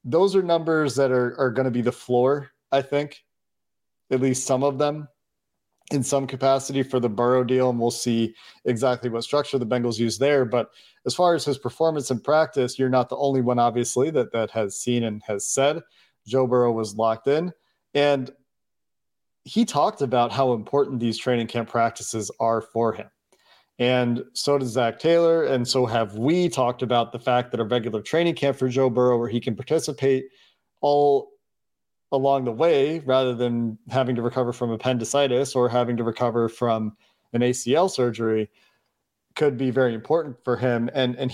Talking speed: 185 wpm